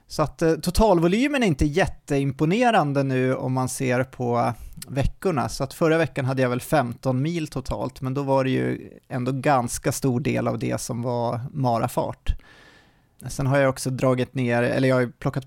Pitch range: 120-145 Hz